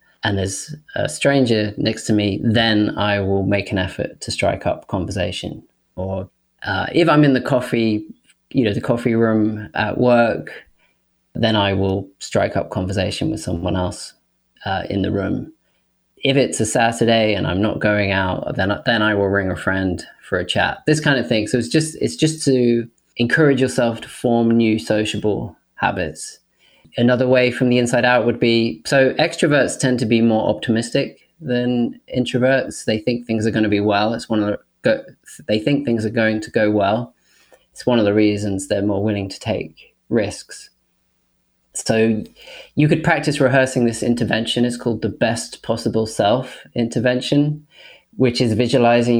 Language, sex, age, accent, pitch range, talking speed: English, male, 20-39, British, 105-125 Hz, 180 wpm